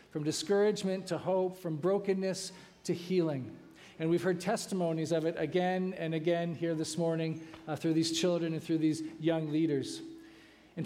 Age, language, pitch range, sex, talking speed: 40-59, English, 155-185 Hz, male, 165 wpm